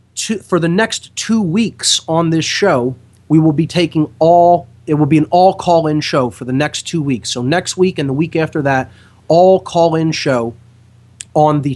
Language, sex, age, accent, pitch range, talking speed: English, male, 30-49, American, 120-175 Hz, 210 wpm